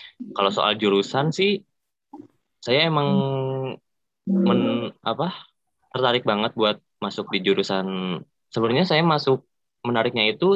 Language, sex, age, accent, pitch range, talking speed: Indonesian, male, 20-39, native, 100-130 Hz, 110 wpm